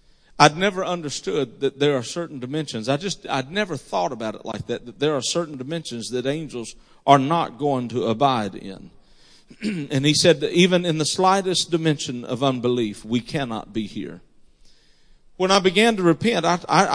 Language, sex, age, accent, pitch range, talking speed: English, male, 50-69, American, 135-170 Hz, 175 wpm